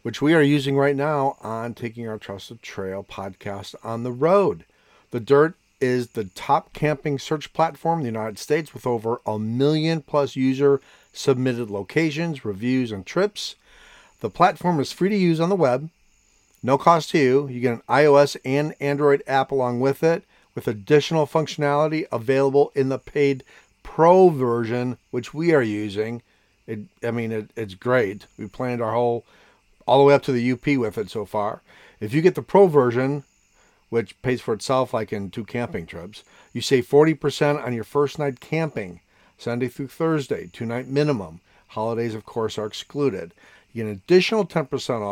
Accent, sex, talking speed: American, male, 170 wpm